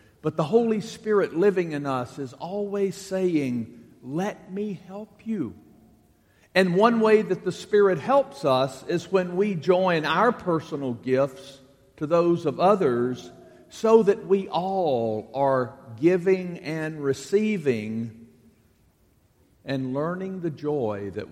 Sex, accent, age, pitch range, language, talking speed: male, American, 50-69, 125-185 Hz, English, 130 wpm